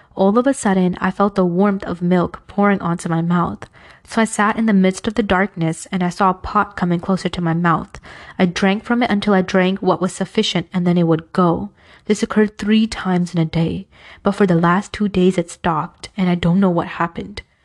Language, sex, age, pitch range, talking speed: English, female, 20-39, 175-210 Hz, 235 wpm